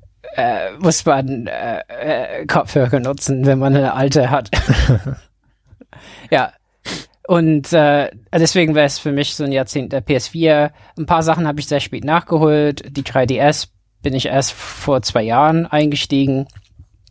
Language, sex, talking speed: German, male, 140 wpm